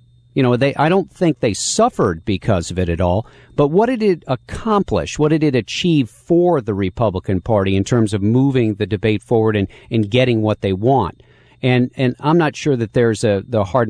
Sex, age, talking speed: male, 50-69, 210 wpm